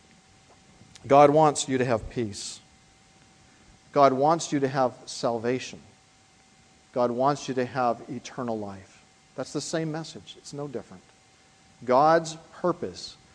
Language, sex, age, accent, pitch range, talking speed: English, male, 40-59, American, 120-175 Hz, 125 wpm